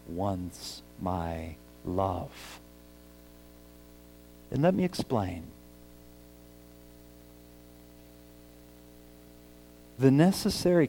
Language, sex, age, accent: English, male, 50-69, American